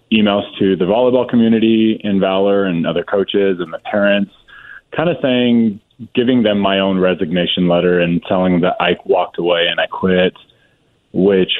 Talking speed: 170 wpm